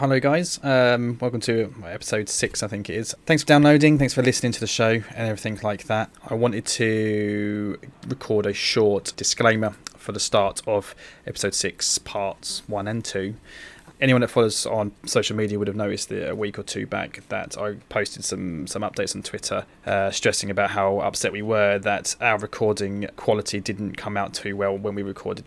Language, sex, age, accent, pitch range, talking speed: English, male, 20-39, British, 100-115 Hz, 195 wpm